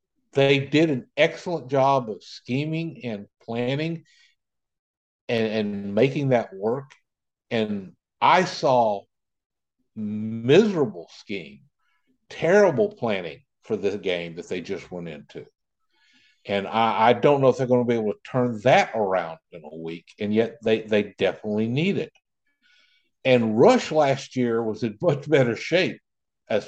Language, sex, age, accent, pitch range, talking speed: English, male, 50-69, American, 105-145 Hz, 145 wpm